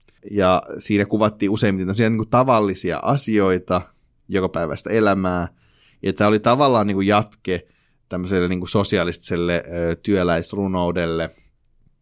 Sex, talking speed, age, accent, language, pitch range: male, 105 wpm, 30-49, native, Finnish, 85-95 Hz